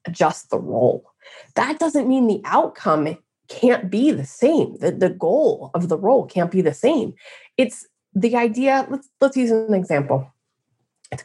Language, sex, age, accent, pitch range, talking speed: English, female, 20-39, American, 195-275 Hz, 165 wpm